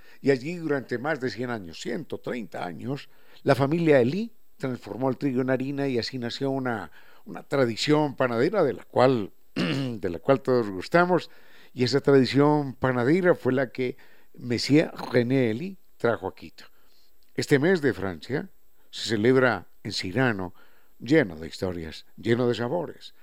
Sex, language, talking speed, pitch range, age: male, Spanish, 150 wpm, 115-150 Hz, 60-79